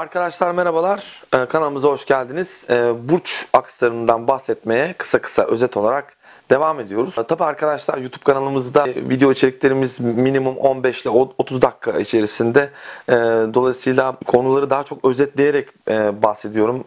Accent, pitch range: native, 120-145 Hz